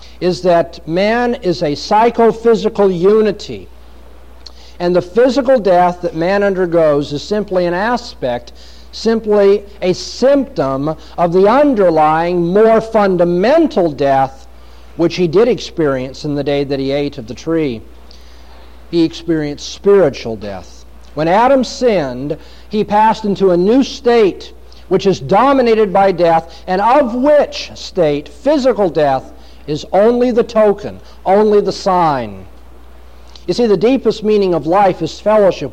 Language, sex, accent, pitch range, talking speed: English, male, American, 130-210 Hz, 135 wpm